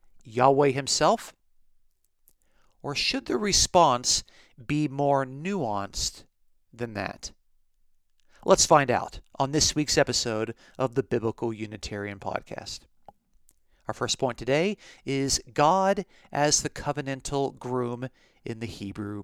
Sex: male